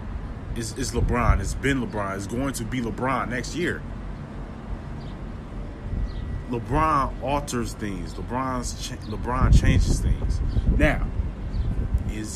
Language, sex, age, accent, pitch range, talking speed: English, male, 20-39, American, 95-120 Hz, 110 wpm